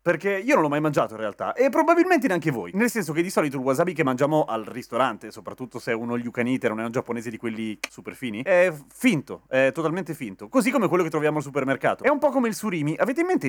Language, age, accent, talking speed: Italian, 30-49, native, 250 wpm